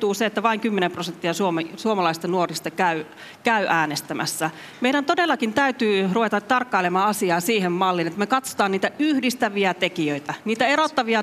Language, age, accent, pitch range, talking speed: Finnish, 40-59, native, 180-235 Hz, 140 wpm